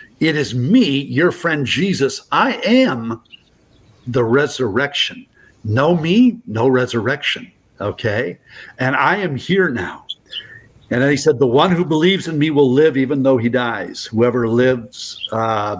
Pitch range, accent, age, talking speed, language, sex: 110-155 Hz, American, 50-69, 150 wpm, English, male